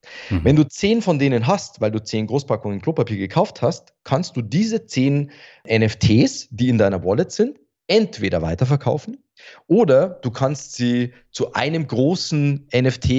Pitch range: 120-175 Hz